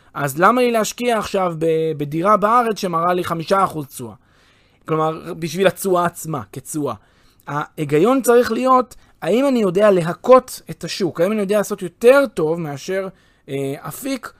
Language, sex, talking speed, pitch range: Hebrew, male, 145 wpm, 155-215 Hz